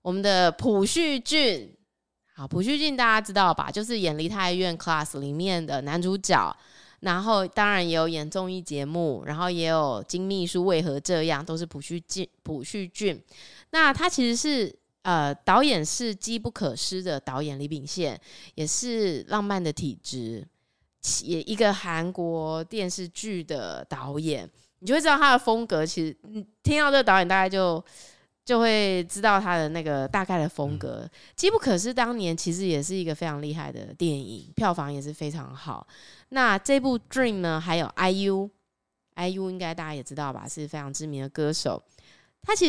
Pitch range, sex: 160-220 Hz, female